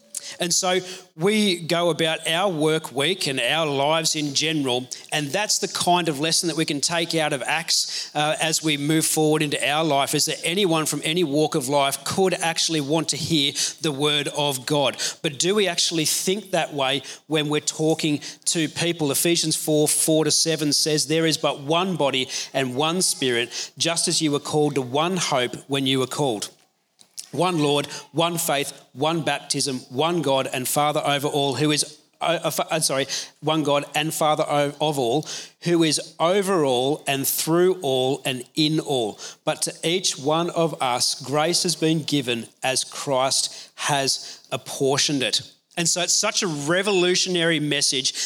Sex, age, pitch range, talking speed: male, 40-59, 145-170 Hz, 175 wpm